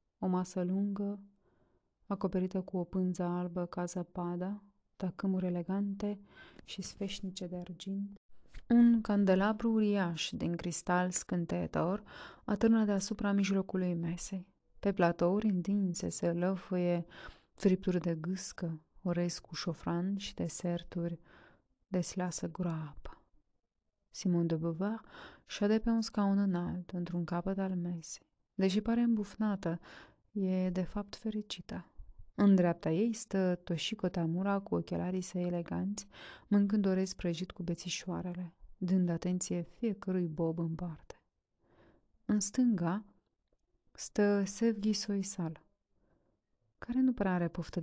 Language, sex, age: English, female, 30-49